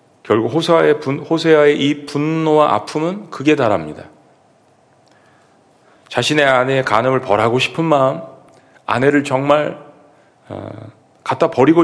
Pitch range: 115-160 Hz